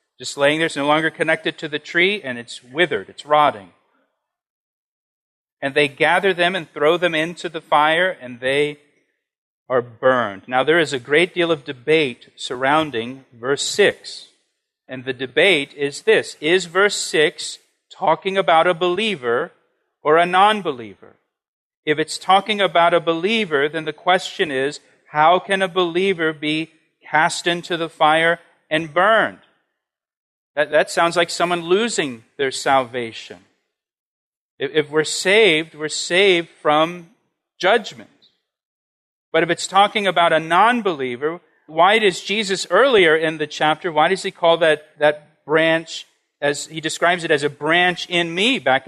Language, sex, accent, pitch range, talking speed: English, male, American, 150-185 Hz, 150 wpm